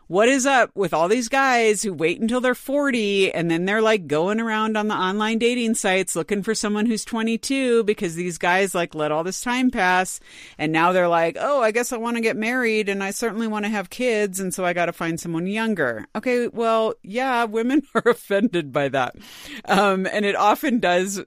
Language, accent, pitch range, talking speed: English, American, 155-210 Hz, 215 wpm